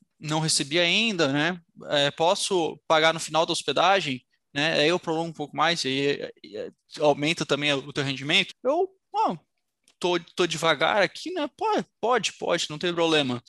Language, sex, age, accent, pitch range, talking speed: Portuguese, male, 20-39, Brazilian, 160-235 Hz, 180 wpm